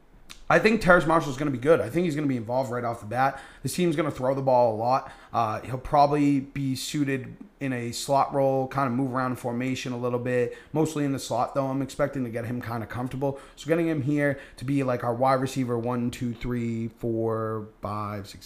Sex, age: male, 30-49